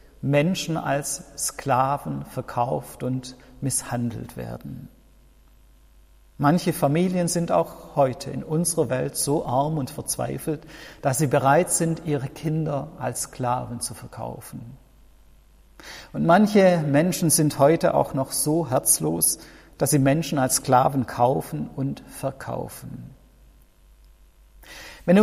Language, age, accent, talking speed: German, 50-69, German, 110 wpm